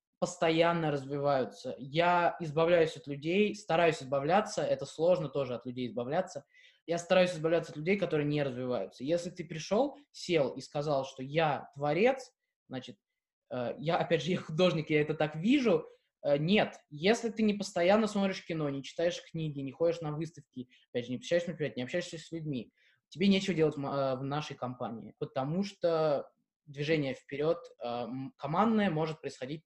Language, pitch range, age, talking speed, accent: Russian, 145-190 Hz, 20-39, 155 wpm, native